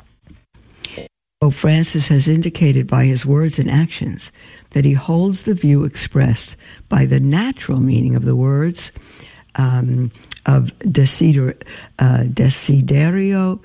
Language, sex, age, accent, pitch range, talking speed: English, female, 60-79, American, 130-175 Hz, 115 wpm